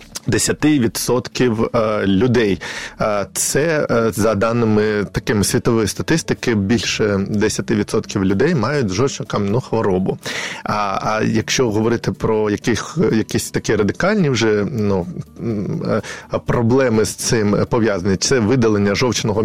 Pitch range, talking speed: 105-135 Hz, 100 wpm